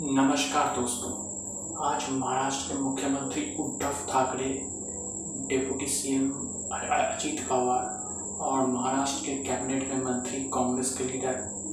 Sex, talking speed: male, 115 wpm